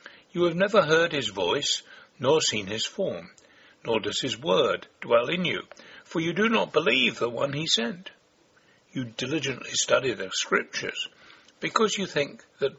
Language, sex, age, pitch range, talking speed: English, male, 60-79, 135-225 Hz, 165 wpm